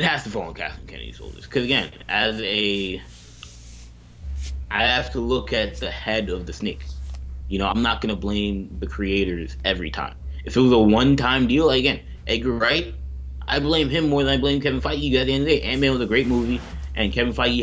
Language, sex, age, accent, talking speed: English, male, 20-39, American, 225 wpm